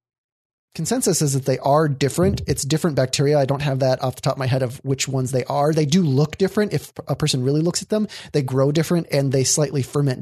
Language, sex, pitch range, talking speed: English, male, 130-150 Hz, 245 wpm